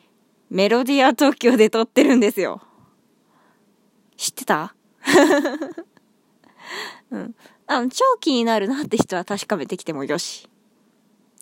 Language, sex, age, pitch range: Japanese, female, 20-39, 205-260 Hz